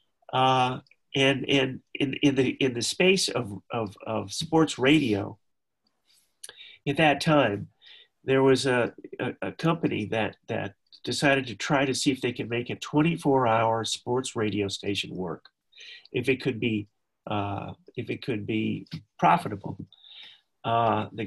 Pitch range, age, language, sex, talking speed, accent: 110-140 Hz, 40-59, English, male, 125 wpm, American